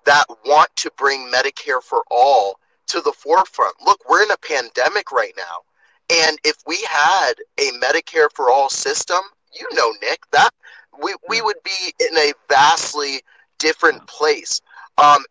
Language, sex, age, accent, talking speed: English, male, 30-49, American, 155 wpm